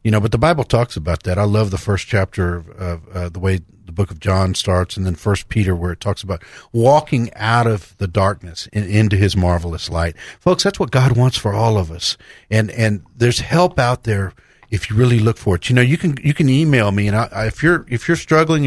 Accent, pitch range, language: American, 100-130 Hz, English